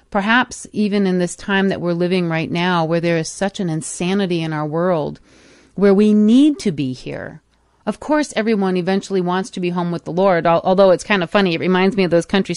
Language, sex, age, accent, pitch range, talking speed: English, female, 40-59, American, 170-210 Hz, 225 wpm